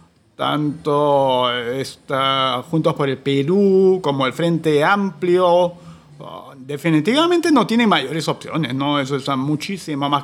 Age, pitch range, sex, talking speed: 40-59, 140-185 Hz, male, 115 wpm